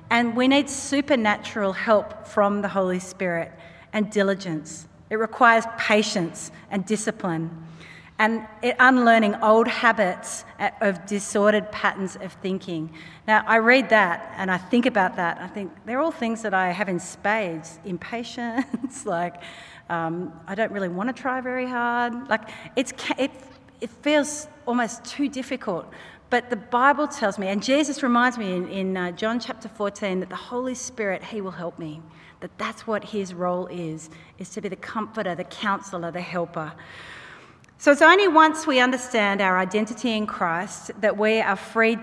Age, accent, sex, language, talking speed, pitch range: 40-59, Australian, female, English, 165 wpm, 180-235 Hz